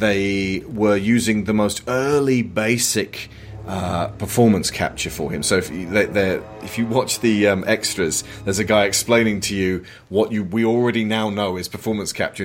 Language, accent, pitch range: English, British, 95-120 Hz